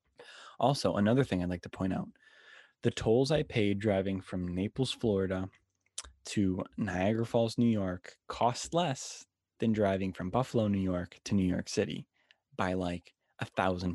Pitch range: 95-125 Hz